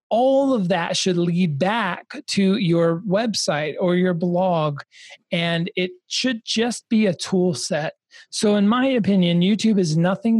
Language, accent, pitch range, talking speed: English, American, 155-200 Hz, 155 wpm